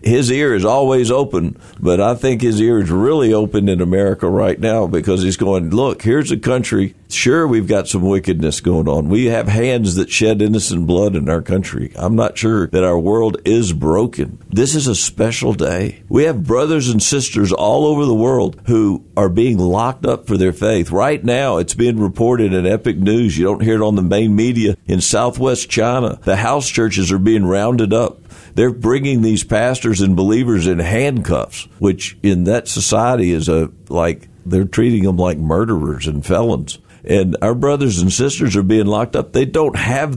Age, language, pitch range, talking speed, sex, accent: 50-69, English, 95-115 Hz, 195 wpm, male, American